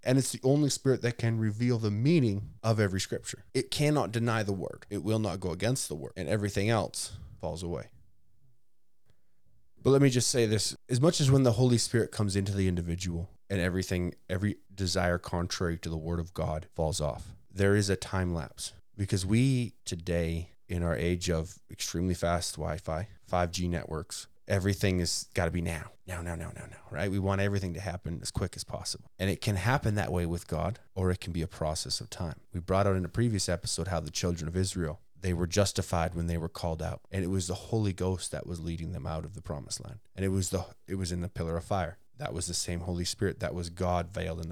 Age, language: 20-39, English